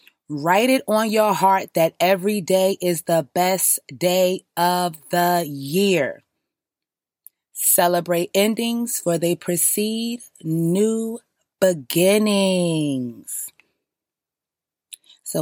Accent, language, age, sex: American, English, 20-39, female